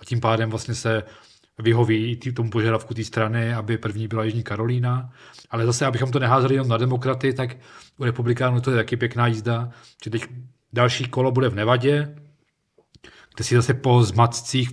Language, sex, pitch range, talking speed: Czech, male, 115-130 Hz, 180 wpm